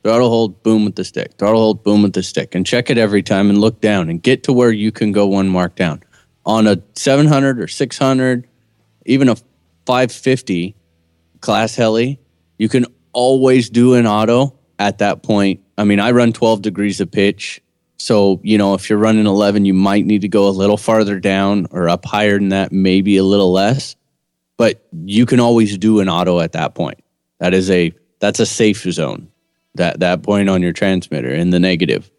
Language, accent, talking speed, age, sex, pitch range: English, American, 200 wpm, 30-49, male, 95-120 Hz